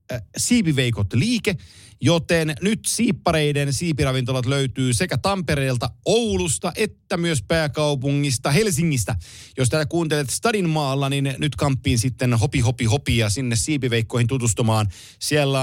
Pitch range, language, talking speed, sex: 120-150 Hz, Finnish, 115 wpm, male